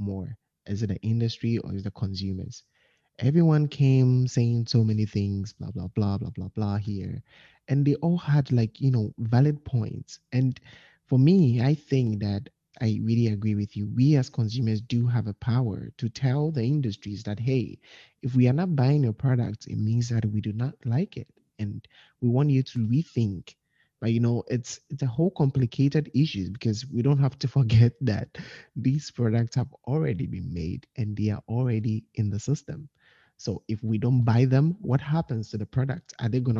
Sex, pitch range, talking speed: male, 110-135 Hz, 195 wpm